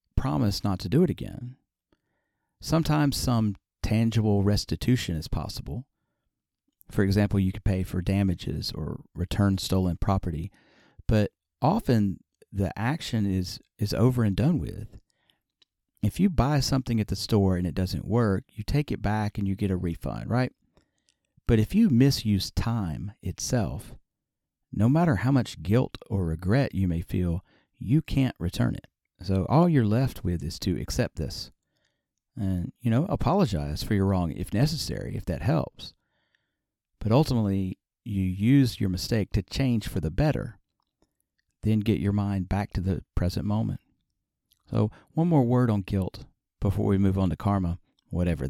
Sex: male